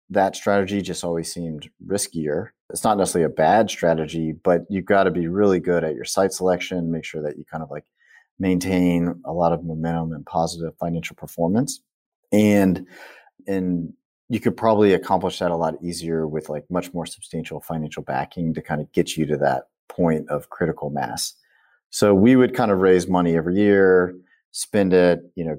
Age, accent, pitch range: 30-49, American, 80-90 Hz